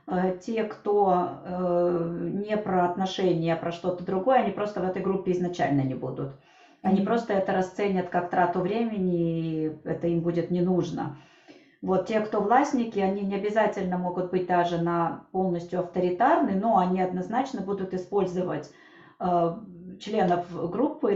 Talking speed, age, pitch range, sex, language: 145 wpm, 30-49, 175-220 Hz, female, Russian